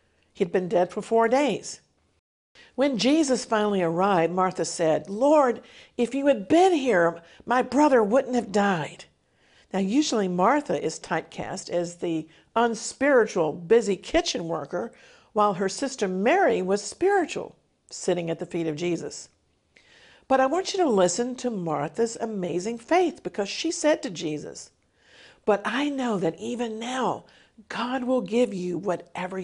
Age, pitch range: 50-69, 170-250 Hz